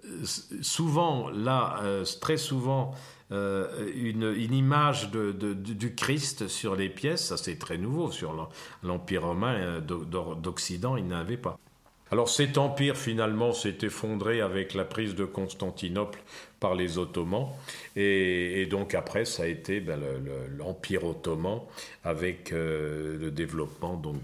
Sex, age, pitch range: male, 50-69, 90-135 Hz